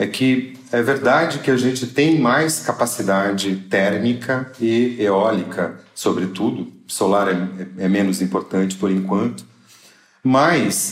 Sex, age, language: male, 40-59, Portuguese